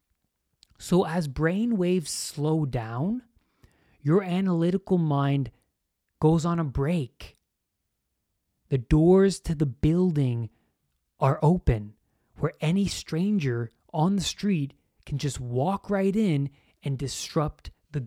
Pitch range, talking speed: 125-165 Hz, 115 wpm